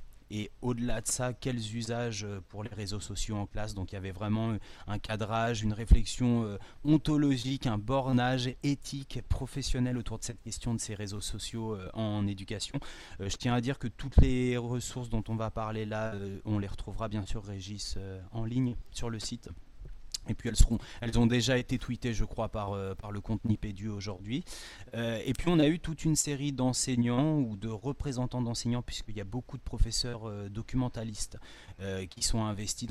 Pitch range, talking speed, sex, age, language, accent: 105-125 Hz, 190 wpm, male, 30-49, French, French